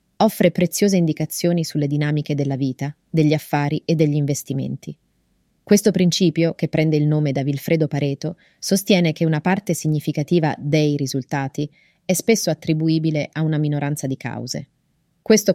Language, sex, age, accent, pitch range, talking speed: Italian, female, 30-49, native, 145-165 Hz, 145 wpm